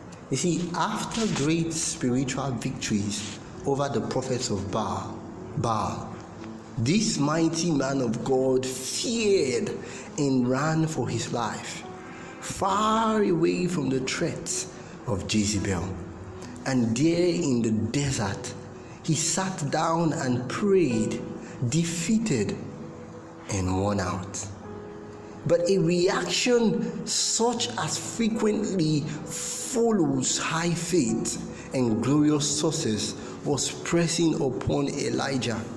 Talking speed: 100 wpm